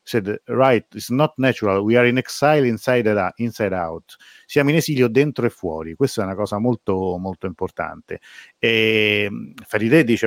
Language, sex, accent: Italian, male, native